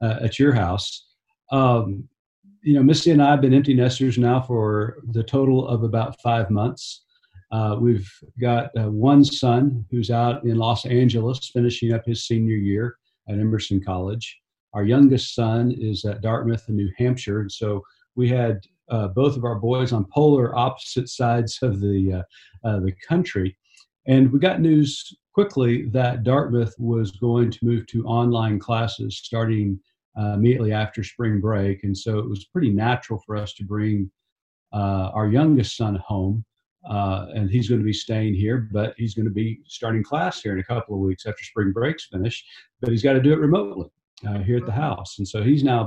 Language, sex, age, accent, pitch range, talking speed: English, male, 50-69, American, 105-125 Hz, 190 wpm